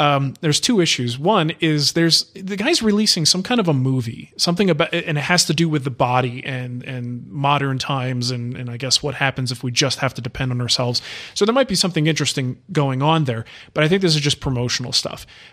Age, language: 30-49, English